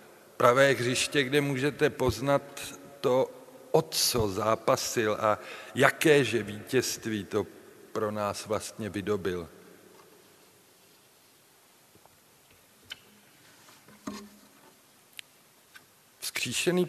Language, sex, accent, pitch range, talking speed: Czech, male, native, 110-140 Hz, 65 wpm